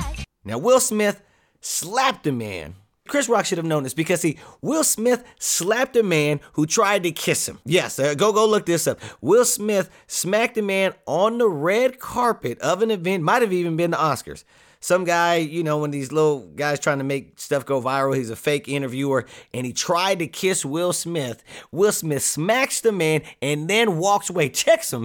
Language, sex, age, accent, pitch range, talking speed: English, male, 30-49, American, 145-205 Hz, 205 wpm